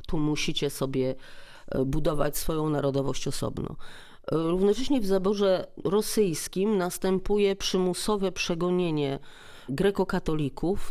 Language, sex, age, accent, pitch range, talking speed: Polish, female, 40-59, native, 150-190 Hz, 85 wpm